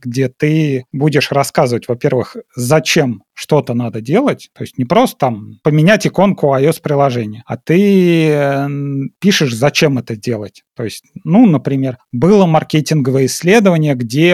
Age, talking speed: 30-49, 125 wpm